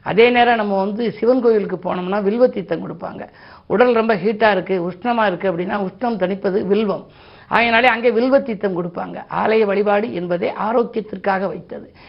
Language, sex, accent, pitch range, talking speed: Tamil, female, native, 185-225 Hz, 140 wpm